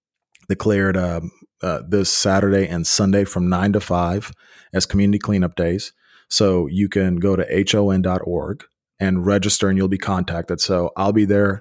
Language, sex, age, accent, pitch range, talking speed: English, male, 20-39, American, 90-100 Hz, 160 wpm